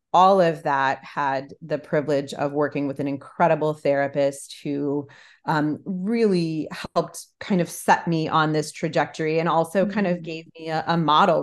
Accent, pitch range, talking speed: American, 140-155 Hz, 170 wpm